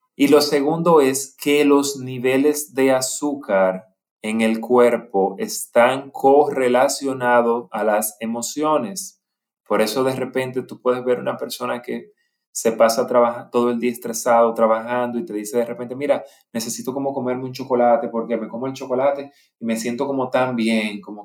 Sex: male